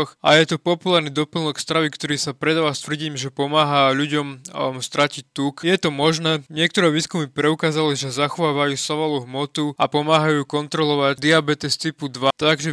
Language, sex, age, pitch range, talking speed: Slovak, male, 20-39, 140-155 Hz, 160 wpm